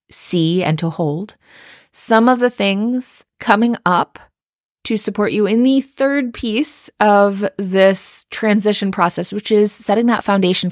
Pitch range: 155-195 Hz